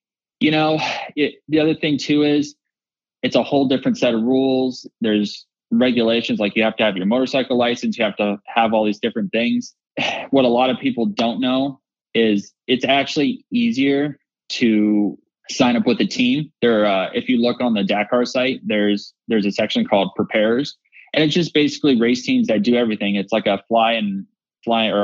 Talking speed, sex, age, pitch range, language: 190 wpm, male, 20-39, 105-130 Hz, English